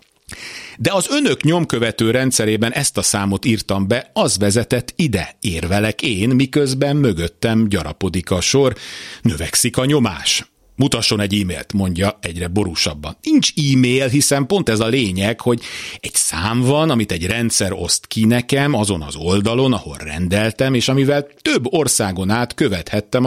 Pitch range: 95-130 Hz